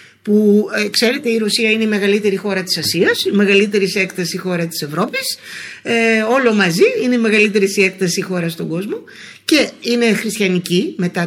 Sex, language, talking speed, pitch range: female, Greek, 165 wpm, 175-250 Hz